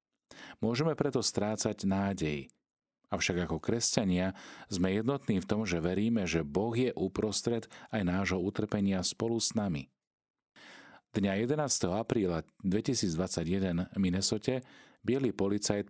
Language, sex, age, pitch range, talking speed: Slovak, male, 40-59, 85-105 Hz, 115 wpm